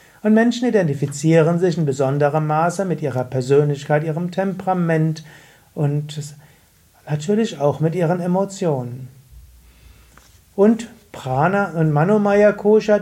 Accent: German